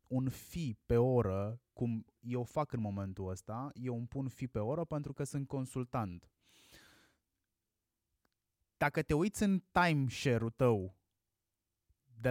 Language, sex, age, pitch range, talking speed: Romanian, male, 20-39, 110-150 Hz, 135 wpm